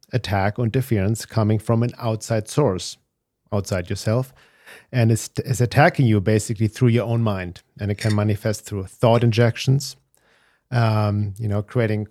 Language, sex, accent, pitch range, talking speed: English, male, German, 105-120 Hz, 155 wpm